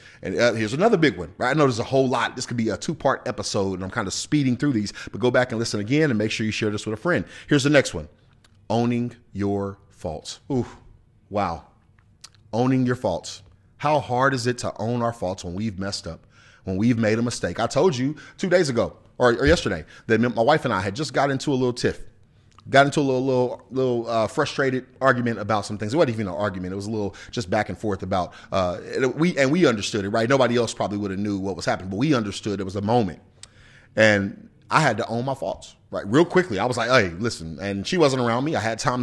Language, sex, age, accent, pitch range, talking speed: English, male, 30-49, American, 105-130 Hz, 250 wpm